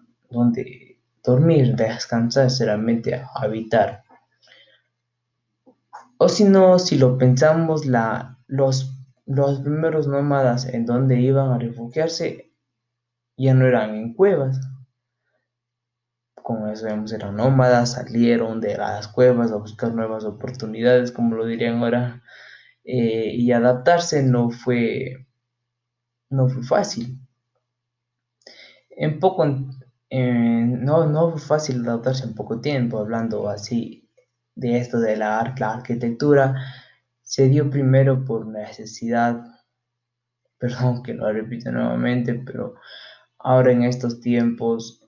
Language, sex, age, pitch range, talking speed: Spanish, male, 20-39, 115-130 Hz, 110 wpm